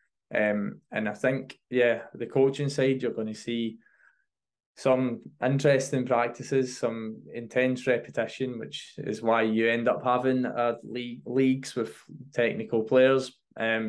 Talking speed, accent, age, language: 135 wpm, British, 20-39, English